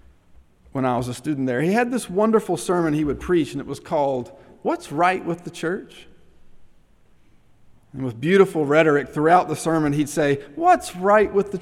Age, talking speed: 40-59, 185 wpm